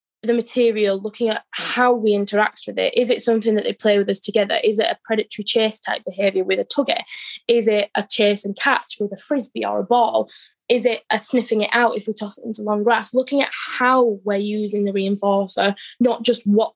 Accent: British